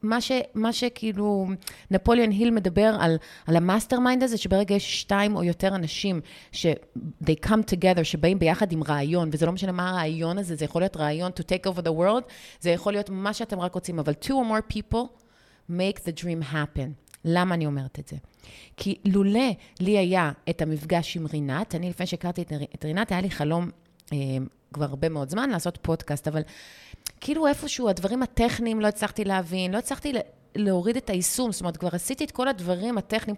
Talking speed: 165 wpm